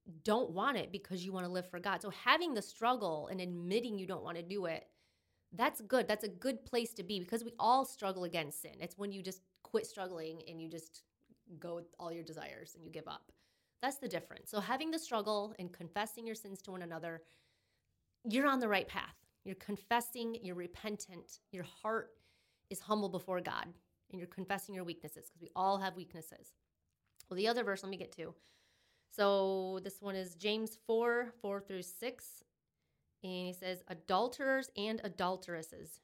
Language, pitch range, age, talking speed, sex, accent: English, 175-215 Hz, 20-39, 195 wpm, female, American